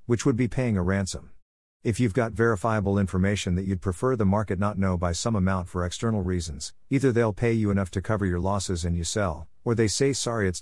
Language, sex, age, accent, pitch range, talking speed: English, male, 50-69, American, 90-115 Hz, 230 wpm